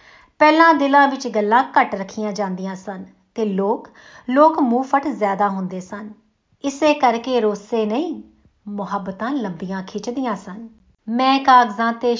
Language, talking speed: Punjabi, 135 wpm